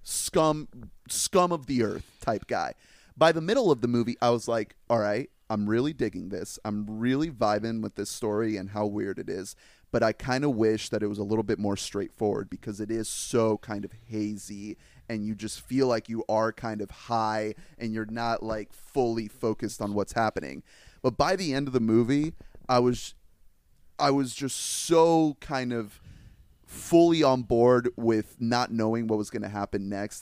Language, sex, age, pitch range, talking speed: English, male, 30-49, 105-125 Hz, 195 wpm